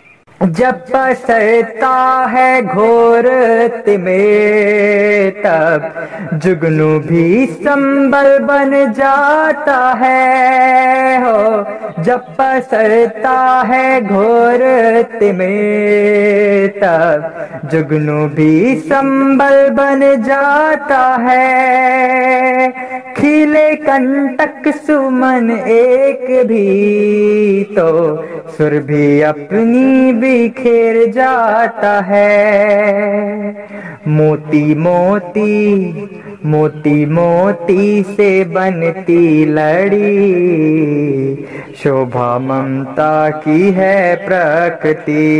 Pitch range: 155-240 Hz